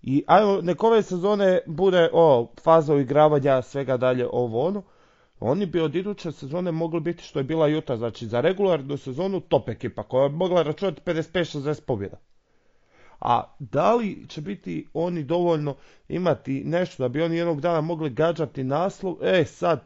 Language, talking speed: Croatian, 160 wpm